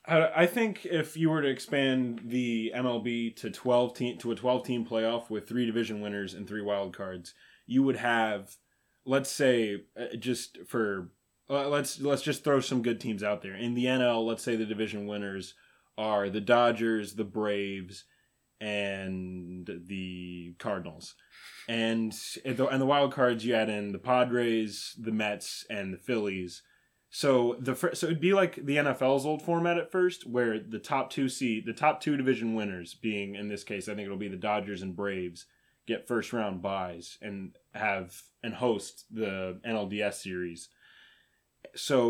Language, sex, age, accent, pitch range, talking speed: English, male, 20-39, American, 100-125 Hz, 170 wpm